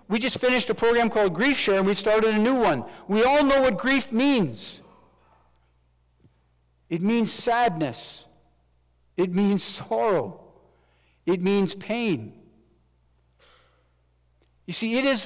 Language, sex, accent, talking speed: English, male, American, 130 wpm